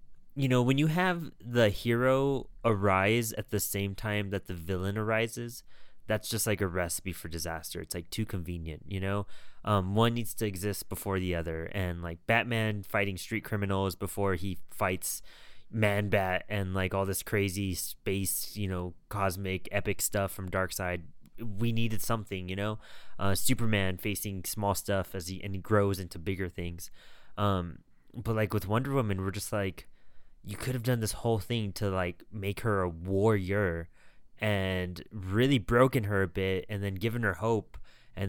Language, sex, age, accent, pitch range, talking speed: English, male, 20-39, American, 95-110 Hz, 180 wpm